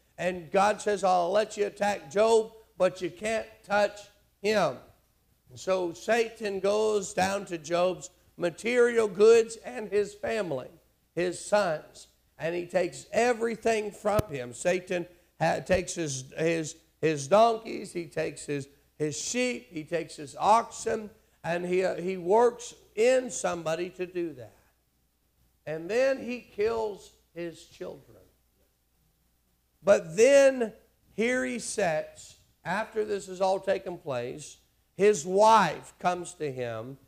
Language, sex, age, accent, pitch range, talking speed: English, male, 50-69, American, 160-205 Hz, 125 wpm